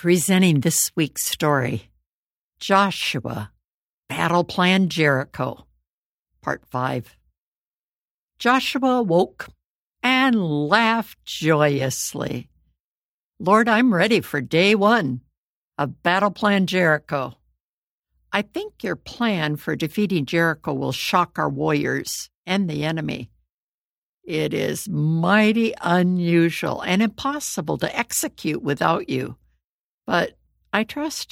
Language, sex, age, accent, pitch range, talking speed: English, female, 60-79, American, 145-205 Hz, 100 wpm